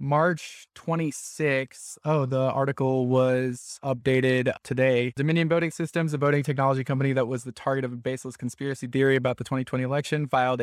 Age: 20-39